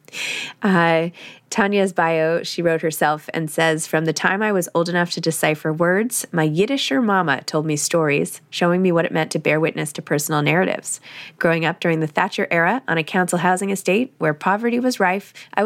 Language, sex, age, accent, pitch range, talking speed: English, female, 20-39, American, 160-195 Hz, 195 wpm